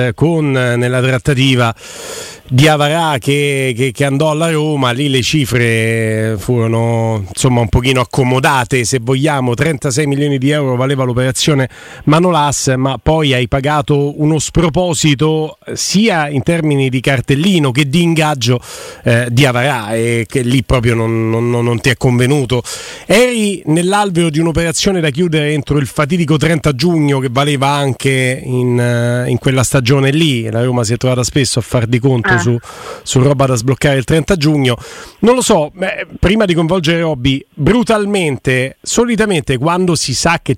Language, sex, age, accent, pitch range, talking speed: Italian, male, 40-59, native, 130-165 Hz, 155 wpm